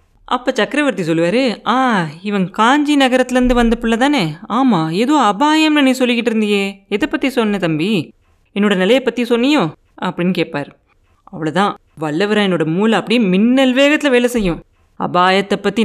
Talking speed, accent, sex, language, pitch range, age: 140 wpm, native, female, Tamil, 175-240 Hz, 20-39